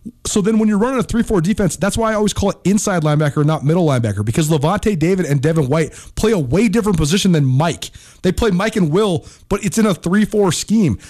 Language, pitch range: English, 115-185 Hz